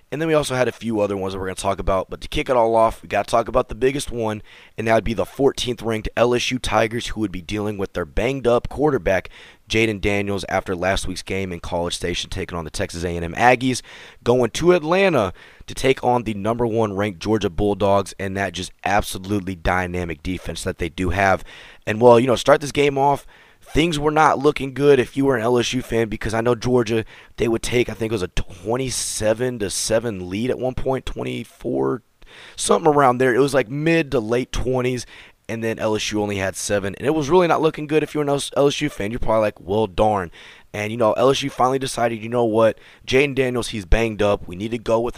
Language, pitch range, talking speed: English, 100-125 Hz, 230 wpm